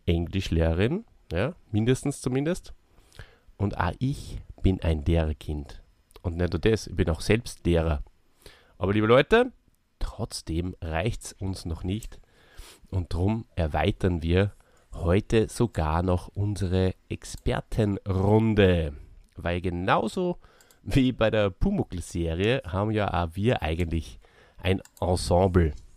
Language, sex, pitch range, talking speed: German, male, 85-110 Hz, 115 wpm